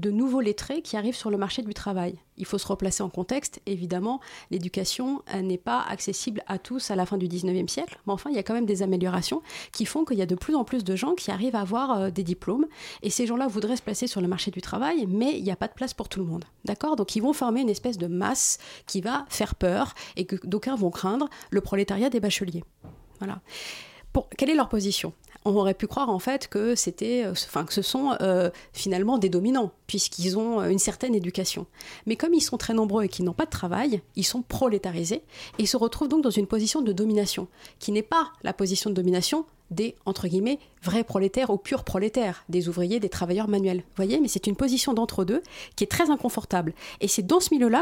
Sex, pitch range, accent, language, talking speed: female, 190-250 Hz, French, French, 235 wpm